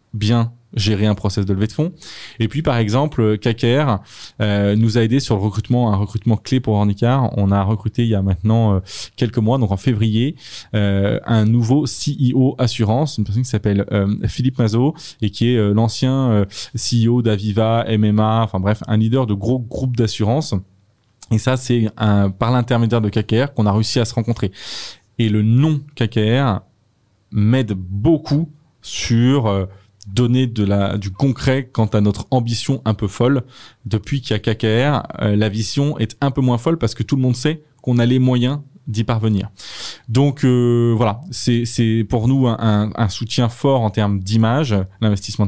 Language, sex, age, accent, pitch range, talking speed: French, male, 20-39, French, 105-125 Hz, 185 wpm